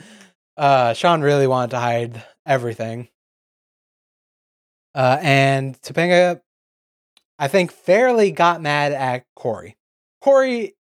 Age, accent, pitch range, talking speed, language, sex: 20-39, American, 115-145 Hz, 100 wpm, English, male